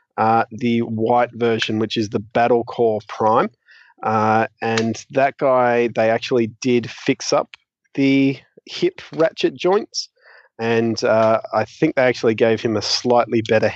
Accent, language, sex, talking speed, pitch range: Australian, English, male, 145 wpm, 110-125 Hz